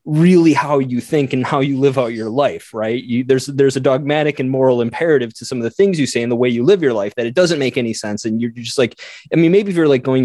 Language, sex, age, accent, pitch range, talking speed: English, male, 20-39, American, 115-155 Hz, 300 wpm